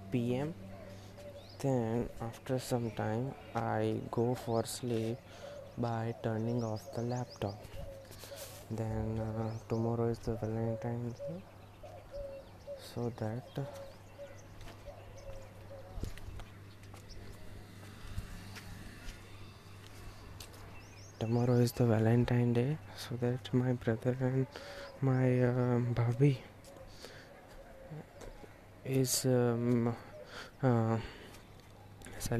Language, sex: Gujarati, male